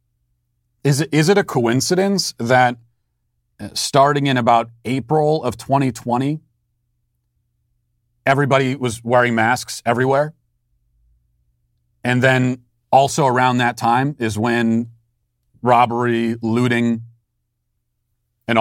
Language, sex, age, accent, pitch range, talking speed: English, male, 40-59, American, 110-125 Hz, 85 wpm